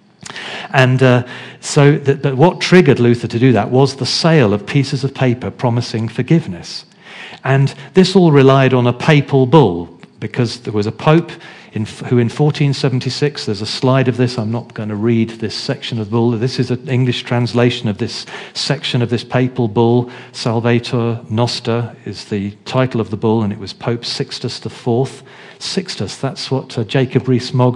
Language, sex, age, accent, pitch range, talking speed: English, male, 40-59, British, 115-140 Hz, 175 wpm